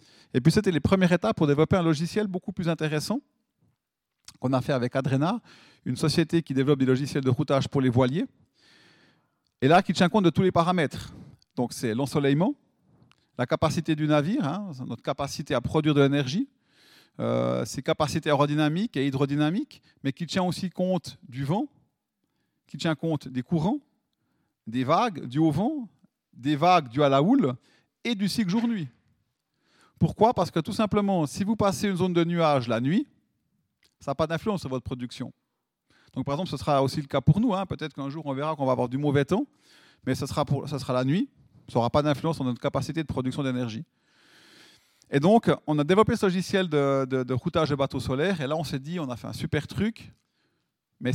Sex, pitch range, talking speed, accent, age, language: male, 135-185 Hz, 200 wpm, French, 40-59, French